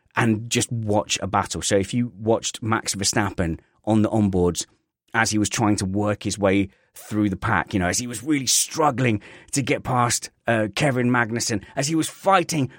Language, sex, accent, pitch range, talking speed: English, male, British, 105-140 Hz, 195 wpm